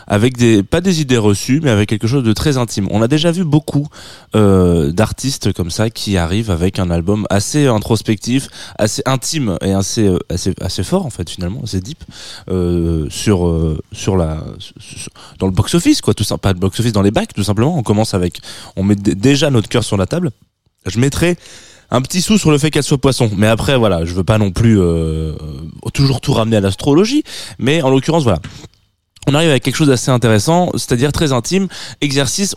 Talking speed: 215 wpm